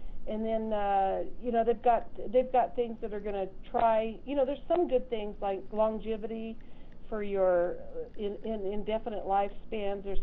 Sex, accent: female, American